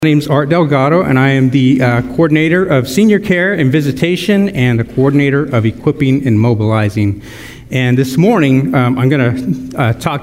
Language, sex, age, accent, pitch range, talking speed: English, male, 50-69, American, 125-150 Hz, 190 wpm